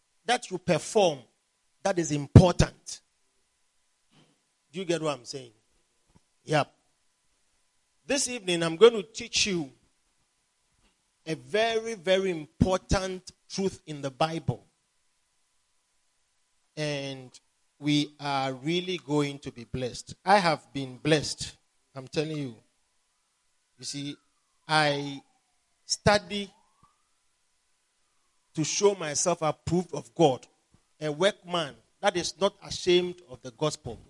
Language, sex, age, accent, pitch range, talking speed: English, male, 40-59, Nigerian, 140-185 Hz, 110 wpm